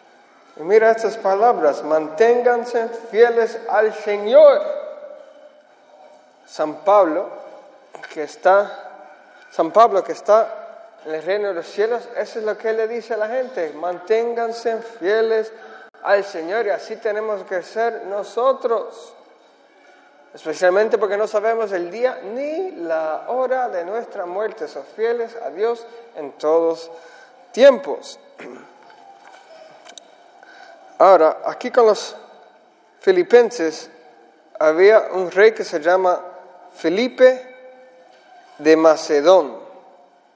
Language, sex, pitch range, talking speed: English, male, 185-255 Hz, 110 wpm